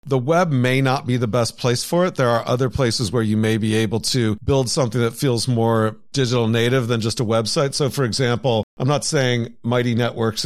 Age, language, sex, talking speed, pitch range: 50-69, English, male, 225 wpm, 115-140 Hz